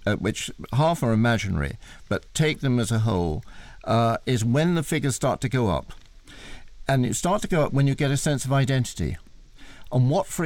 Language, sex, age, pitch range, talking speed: English, male, 60-79, 110-140 Hz, 205 wpm